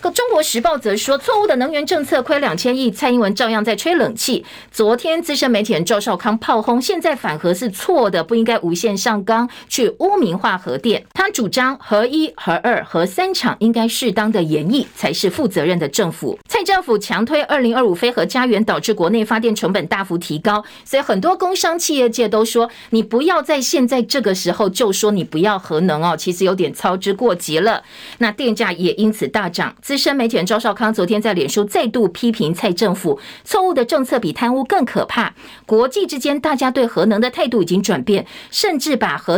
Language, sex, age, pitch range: Chinese, female, 50-69, 210-275 Hz